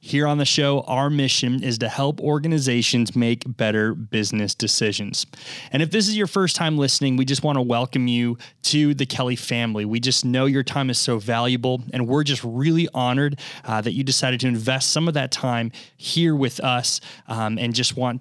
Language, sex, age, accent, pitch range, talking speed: English, male, 20-39, American, 125-155 Hz, 205 wpm